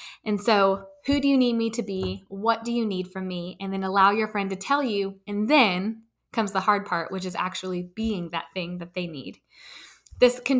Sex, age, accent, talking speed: female, 20-39, American, 225 wpm